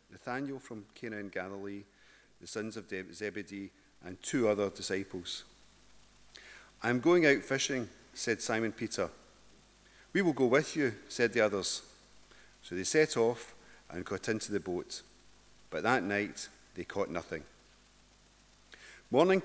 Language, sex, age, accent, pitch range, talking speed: English, male, 40-59, British, 105-140 Hz, 135 wpm